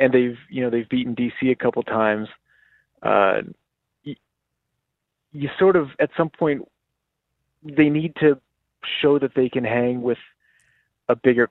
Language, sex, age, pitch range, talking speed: English, male, 30-49, 115-135 Hz, 150 wpm